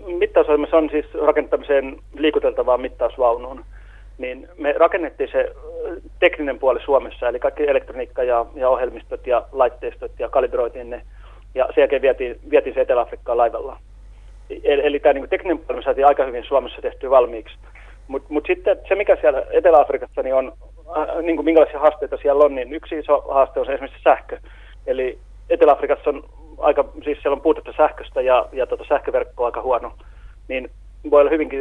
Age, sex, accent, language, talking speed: 30-49, male, native, Finnish, 165 wpm